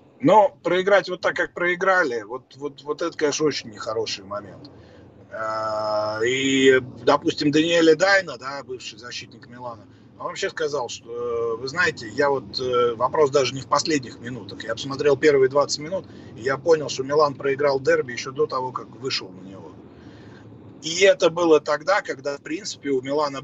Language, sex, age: Russian, male, 30-49